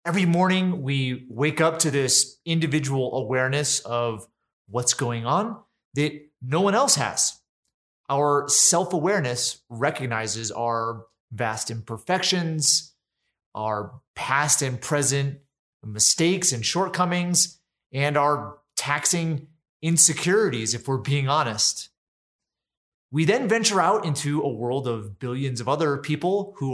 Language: English